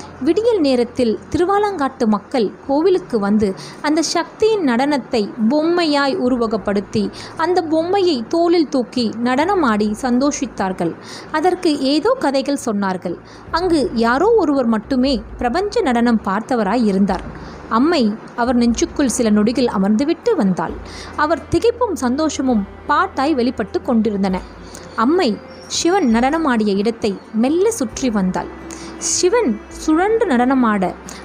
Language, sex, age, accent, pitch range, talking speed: English, female, 20-39, Indian, 220-325 Hz, 100 wpm